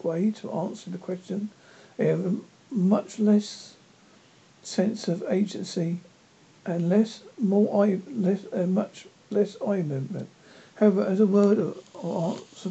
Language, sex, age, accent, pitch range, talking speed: English, male, 60-79, British, 175-205 Hz, 125 wpm